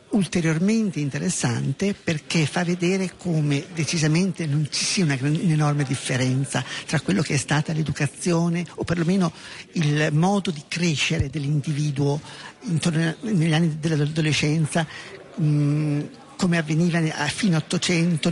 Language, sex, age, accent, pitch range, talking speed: Italian, male, 50-69, native, 150-185 Hz, 120 wpm